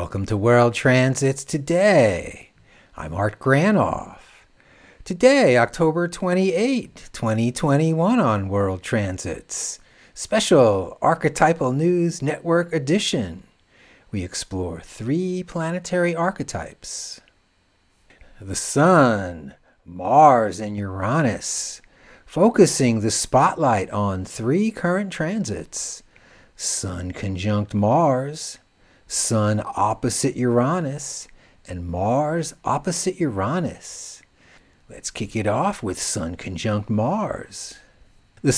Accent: American